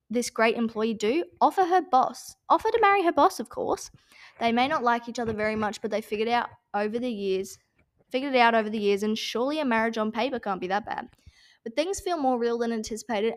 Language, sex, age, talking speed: English, female, 20-39, 235 wpm